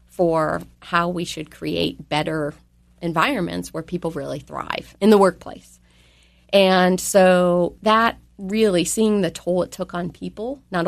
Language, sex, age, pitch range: English, female, 30-49, 155-185 Hz